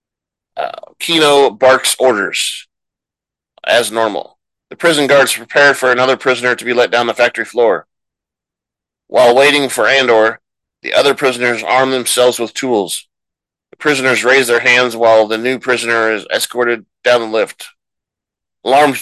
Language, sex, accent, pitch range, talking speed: English, male, American, 115-135 Hz, 145 wpm